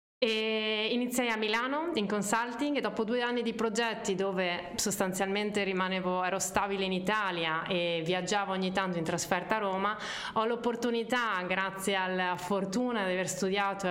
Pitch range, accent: 185-225 Hz, native